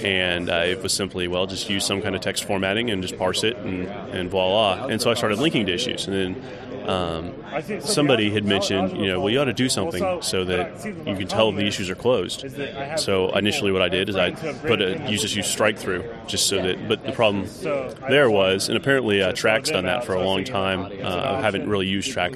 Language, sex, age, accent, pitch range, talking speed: English, male, 30-49, American, 95-115 Hz, 230 wpm